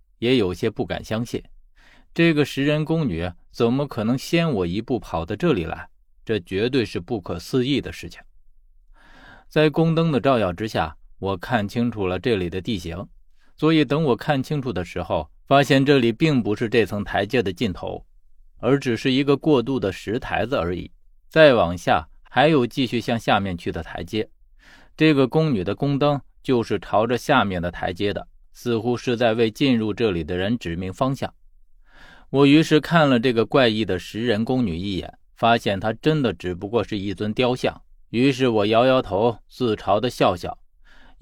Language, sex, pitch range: Chinese, male, 100-135 Hz